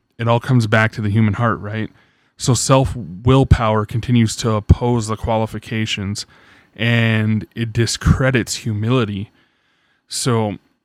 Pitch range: 105-120 Hz